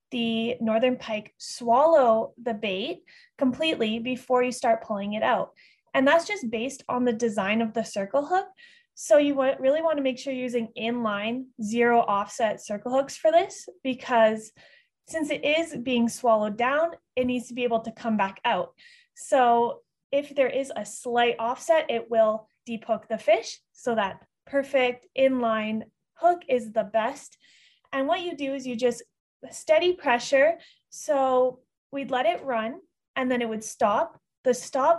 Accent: American